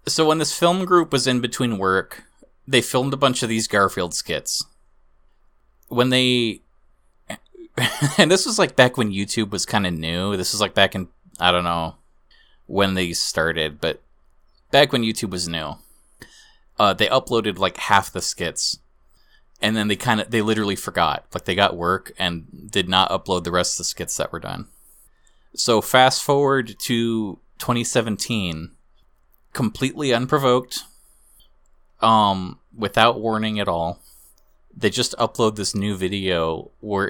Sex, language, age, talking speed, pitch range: male, English, 20-39, 155 wpm, 85-115 Hz